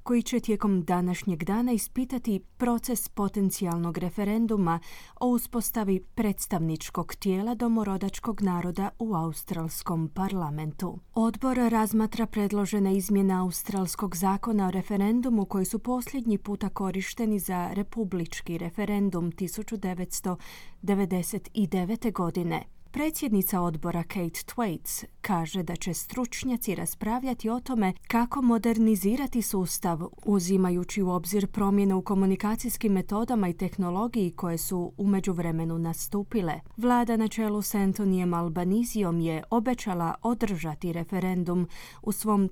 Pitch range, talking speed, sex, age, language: 180-225 Hz, 105 wpm, female, 30-49, Croatian